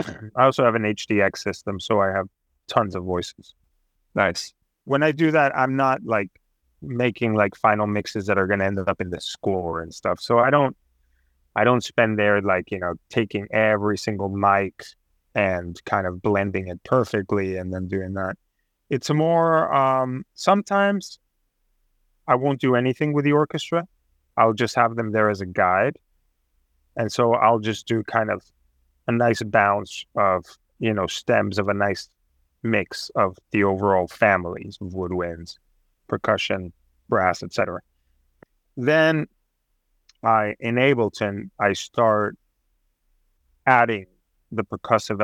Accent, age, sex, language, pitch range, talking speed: American, 30-49, male, English, 90-120 Hz, 155 wpm